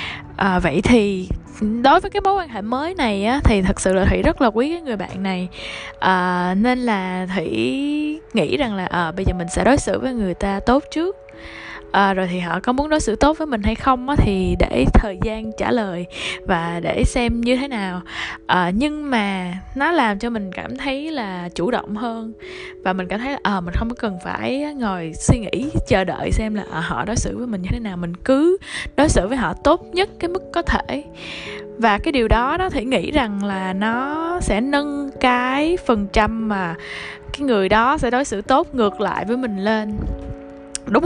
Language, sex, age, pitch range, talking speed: Vietnamese, female, 10-29, 190-275 Hz, 205 wpm